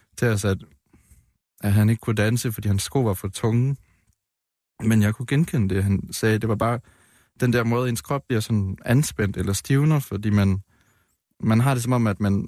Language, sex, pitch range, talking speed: Danish, male, 100-120 Hz, 195 wpm